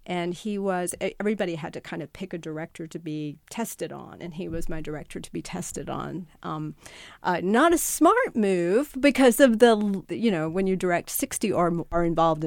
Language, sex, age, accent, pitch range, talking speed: English, female, 40-59, American, 165-220 Hz, 200 wpm